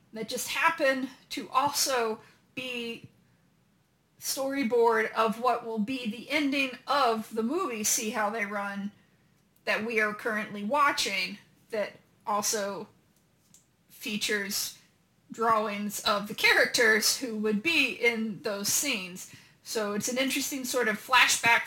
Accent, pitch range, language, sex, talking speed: American, 205-245 Hz, English, female, 125 wpm